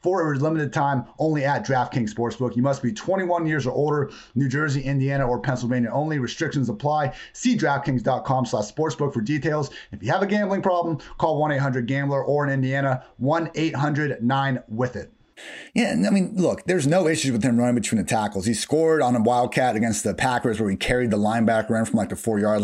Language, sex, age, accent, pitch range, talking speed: English, male, 30-49, American, 125-155 Hz, 190 wpm